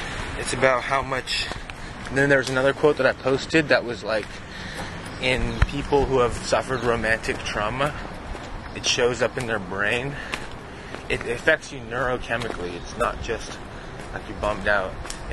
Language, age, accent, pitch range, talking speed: English, 20-39, American, 105-135 Hz, 155 wpm